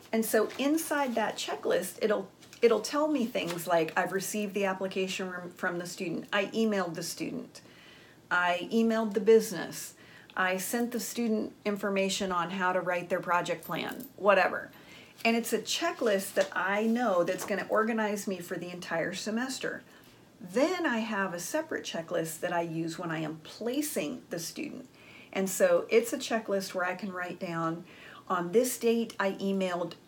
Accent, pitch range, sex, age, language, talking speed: American, 175-215 Hz, female, 40-59, English, 170 wpm